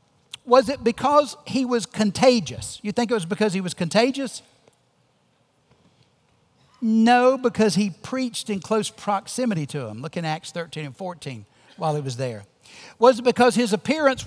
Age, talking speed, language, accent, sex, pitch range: 60-79, 160 wpm, English, American, male, 170-245 Hz